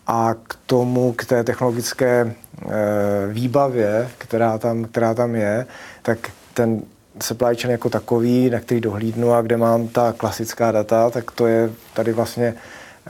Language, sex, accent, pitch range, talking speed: Czech, male, native, 110-120 Hz, 145 wpm